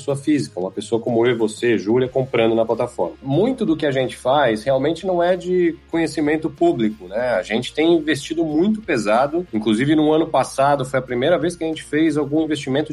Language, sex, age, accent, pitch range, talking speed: Portuguese, male, 40-59, Brazilian, 115-165 Hz, 205 wpm